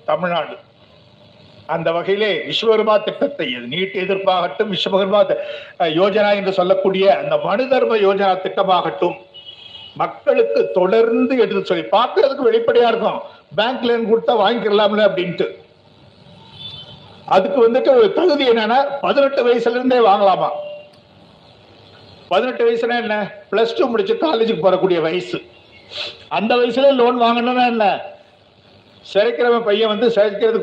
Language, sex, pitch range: Tamil, male, 175-235 Hz